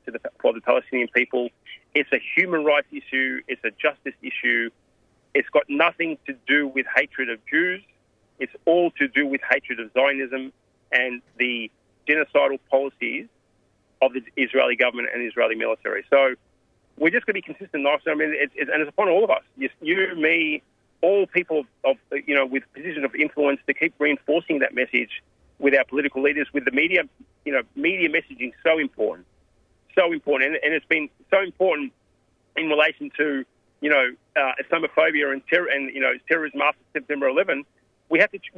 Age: 40-59